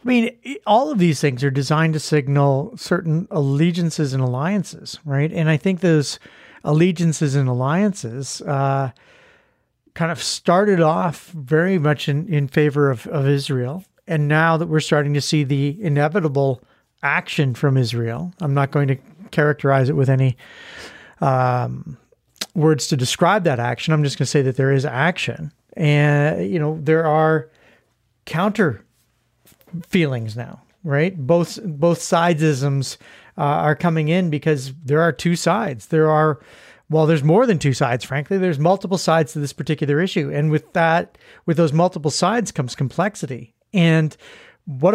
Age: 40-59